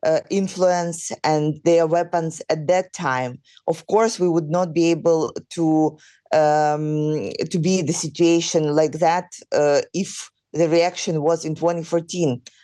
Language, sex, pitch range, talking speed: English, female, 165-195 Hz, 145 wpm